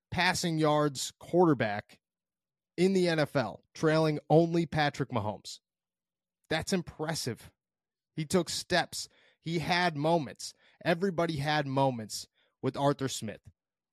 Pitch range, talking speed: 120-150 Hz, 105 wpm